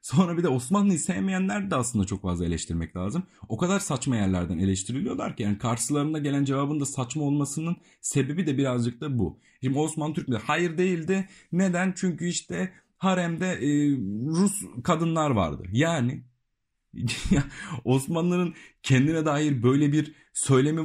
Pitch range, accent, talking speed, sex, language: 115-155 Hz, native, 140 wpm, male, Turkish